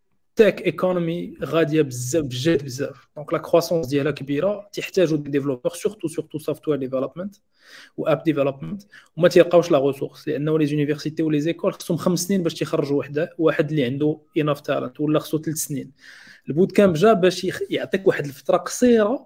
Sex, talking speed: male, 175 wpm